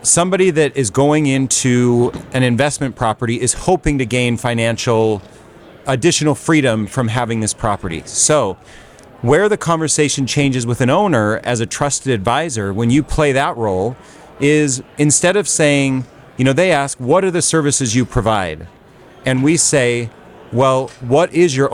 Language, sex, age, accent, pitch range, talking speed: English, male, 30-49, American, 115-145 Hz, 155 wpm